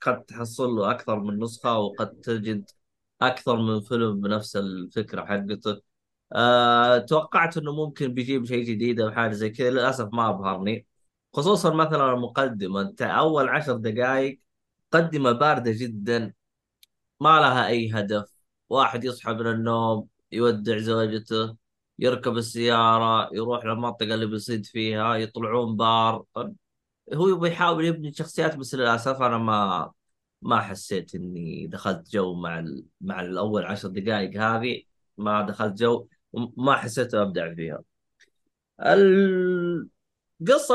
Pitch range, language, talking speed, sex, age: 105-125 Hz, Arabic, 125 wpm, male, 20-39